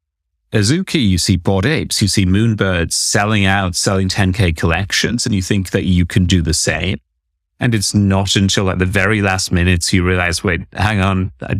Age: 30-49